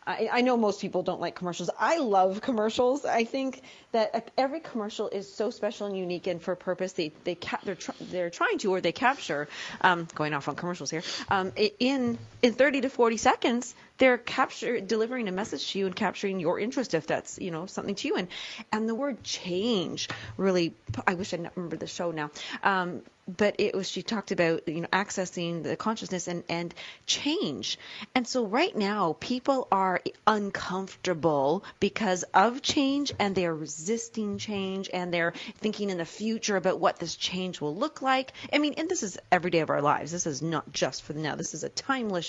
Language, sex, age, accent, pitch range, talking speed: English, female, 30-49, American, 175-240 Hz, 195 wpm